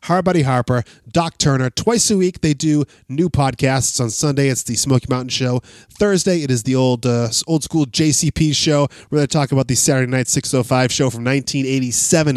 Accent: American